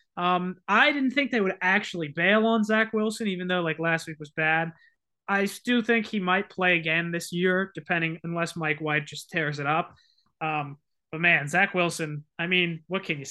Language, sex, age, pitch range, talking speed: English, male, 20-39, 165-210 Hz, 205 wpm